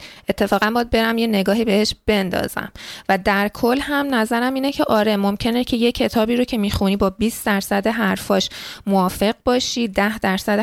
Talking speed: 170 wpm